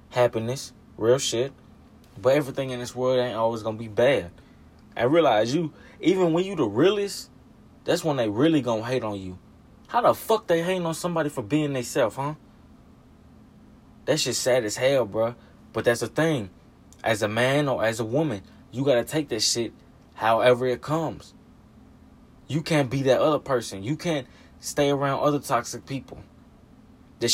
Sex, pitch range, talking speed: male, 105-135 Hz, 175 wpm